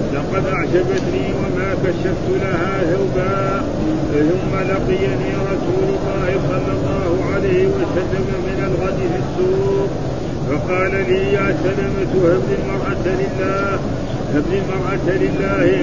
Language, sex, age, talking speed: Arabic, male, 50-69, 105 wpm